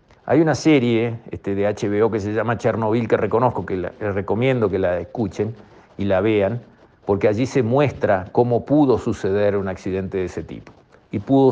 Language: Spanish